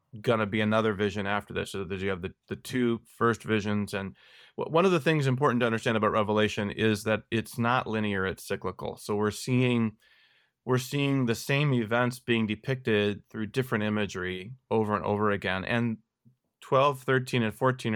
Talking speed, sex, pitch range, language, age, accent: 180 wpm, male, 105-130 Hz, English, 30-49, American